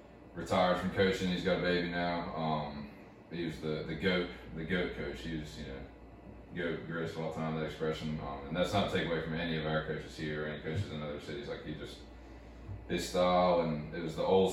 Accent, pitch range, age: American, 75-90 Hz, 20-39